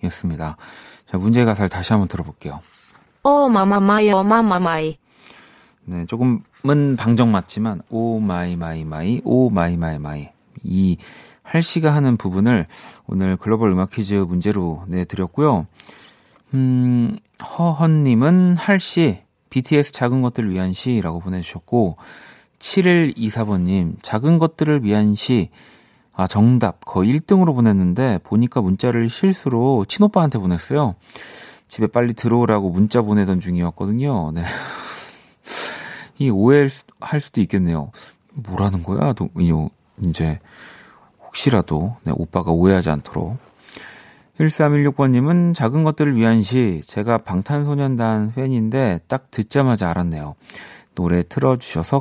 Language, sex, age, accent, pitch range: Korean, male, 40-59, native, 90-140 Hz